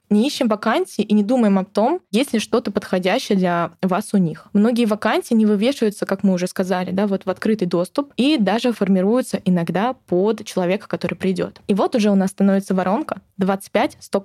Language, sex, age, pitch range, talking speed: Russian, female, 20-39, 185-220 Hz, 190 wpm